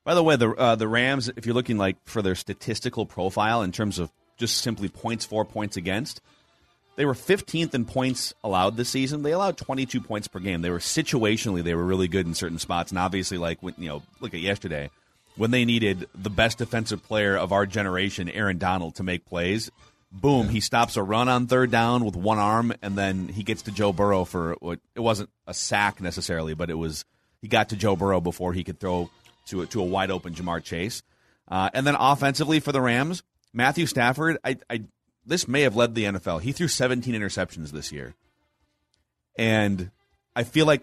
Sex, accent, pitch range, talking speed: male, American, 95-125 Hz, 210 wpm